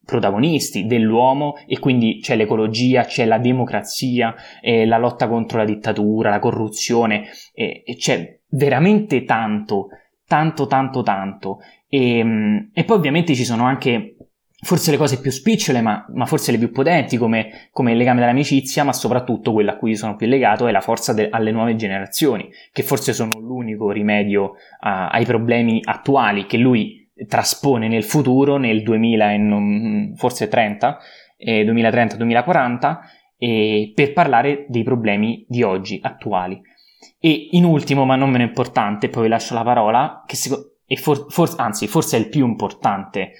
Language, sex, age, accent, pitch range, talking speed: Italian, male, 20-39, native, 110-135 Hz, 160 wpm